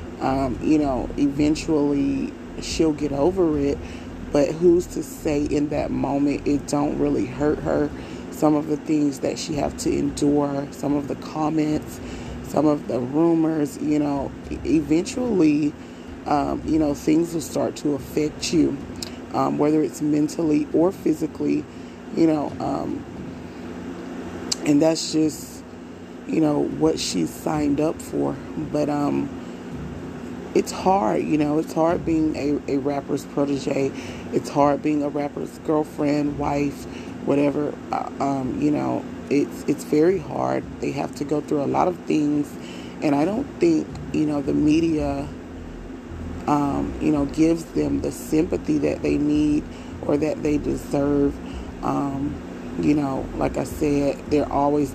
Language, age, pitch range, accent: English, 30-49, 140-155 Hz, American